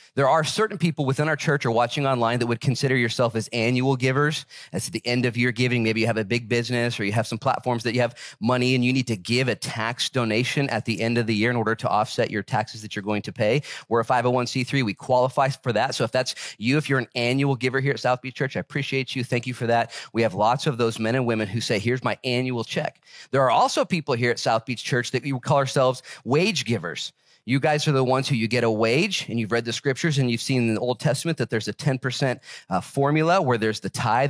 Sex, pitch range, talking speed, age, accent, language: male, 115-140 Hz, 265 wpm, 30-49, American, English